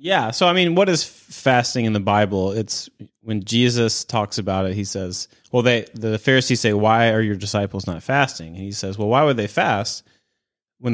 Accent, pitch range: American, 95-115 Hz